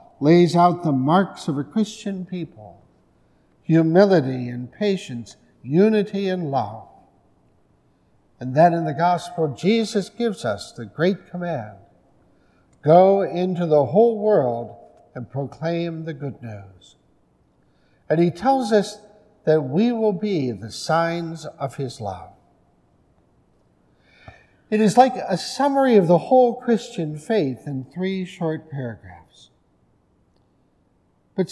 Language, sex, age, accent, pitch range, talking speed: English, male, 60-79, American, 145-195 Hz, 120 wpm